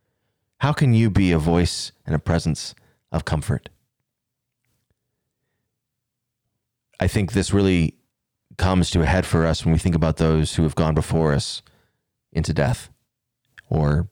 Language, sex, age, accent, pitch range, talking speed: English, male, 30-49, American, 85-120 Hz, 145 wpm